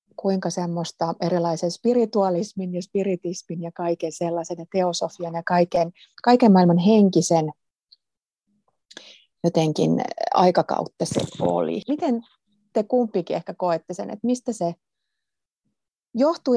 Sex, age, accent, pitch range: female, 30-49, native, 170-215 Hz